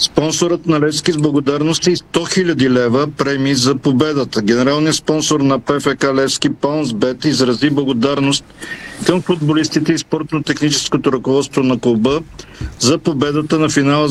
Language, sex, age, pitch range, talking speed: Bulgarian, male, 50-69, 135-155 Hz, 135 wpm